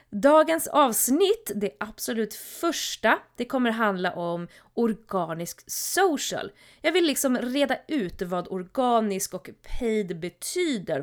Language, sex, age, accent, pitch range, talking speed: Swedish, female, 20-39, native, 185-250 Hz, 115 wpm